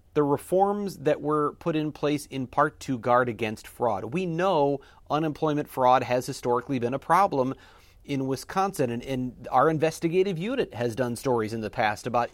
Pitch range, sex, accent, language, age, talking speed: 120-150 Hz, male, American, English, 40-59, 175 wpm